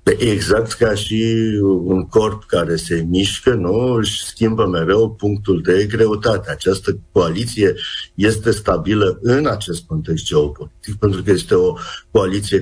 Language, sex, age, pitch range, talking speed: Romanian, male, 50-69, 85-110 Hz, 130 wpm